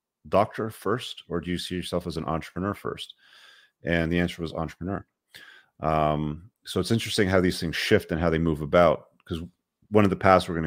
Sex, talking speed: male, 200 wpm